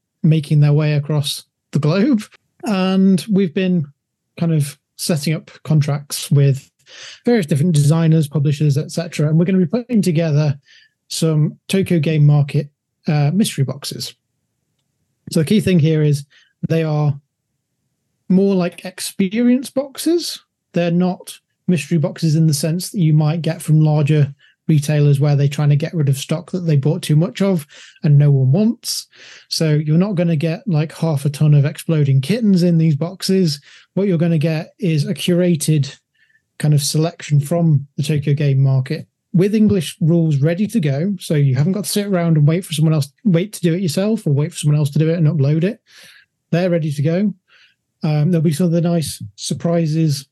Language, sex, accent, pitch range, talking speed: English, male, British, 145-180 Hz, 185 wpm